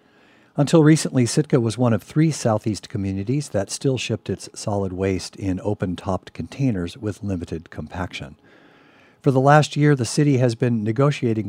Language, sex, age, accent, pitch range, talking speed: English, male, 50-69, American, 100-130 Hz, 155 wpm